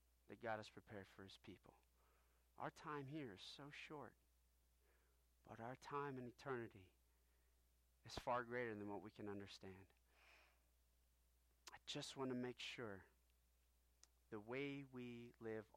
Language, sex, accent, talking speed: English, male, American, 135 wpm